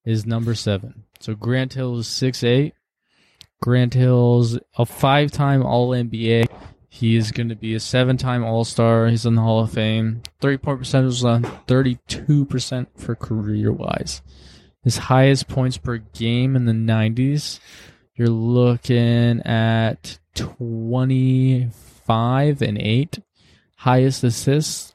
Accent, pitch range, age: American, 115-135 Hz, 20-39